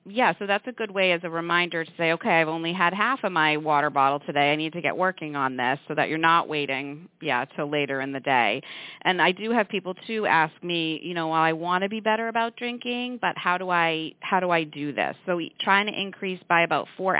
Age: 40-59